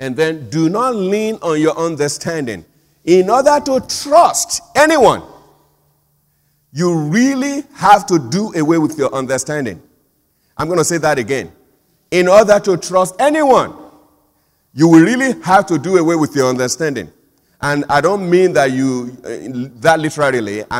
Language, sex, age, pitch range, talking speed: English, male, 50-69, 135-185 Hz, 145 wpm